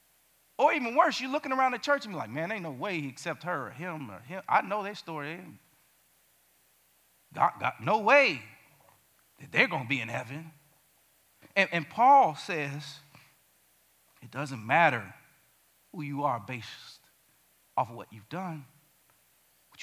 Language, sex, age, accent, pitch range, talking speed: English, male, 50-69, American, 125-170 Hz, 165 wpm